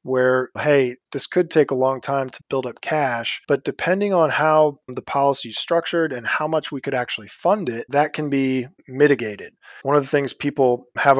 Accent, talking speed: American, 205 wpm